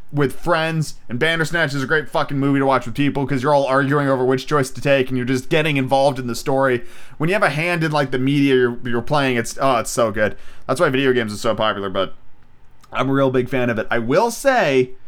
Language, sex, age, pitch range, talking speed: English, male, 30-49, 130-200 Hz, 260 wpm